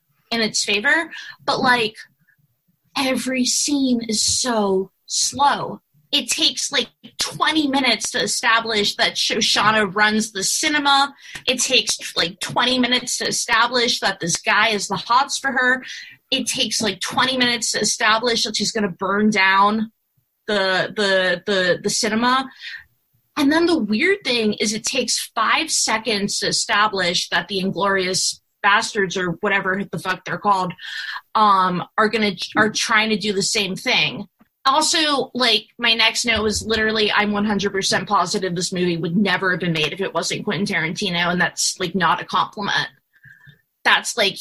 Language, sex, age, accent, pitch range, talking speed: English, female, 20-39, American, 190-240 Hz, 155 wpm